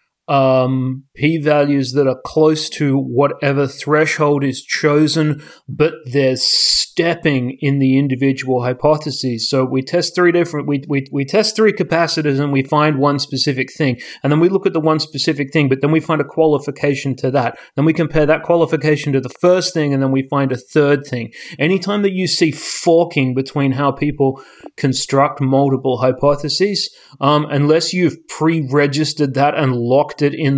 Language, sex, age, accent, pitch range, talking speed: English, male, 30-49, Australian, 130-155 Hz, 170 wpm